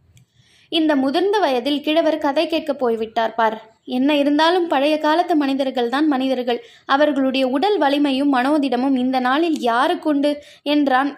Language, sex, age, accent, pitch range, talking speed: Tamil, female, 20-39, native, 250-305 Hz, 125 wpm